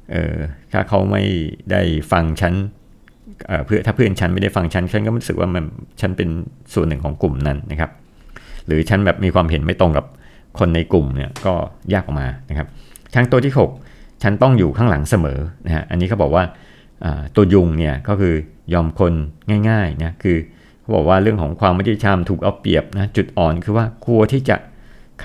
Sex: male